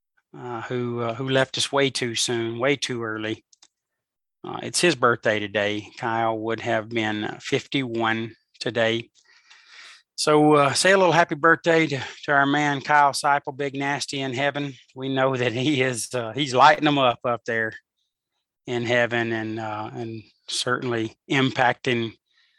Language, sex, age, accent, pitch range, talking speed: English, male, 30-49, American, 115-145 Hz, 155 wpm